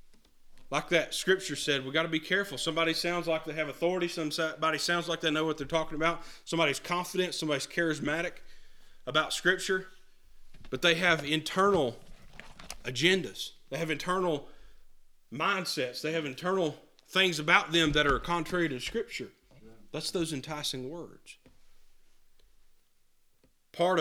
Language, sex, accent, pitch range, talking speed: English, male, American, 130-170 Hz, 135 wpm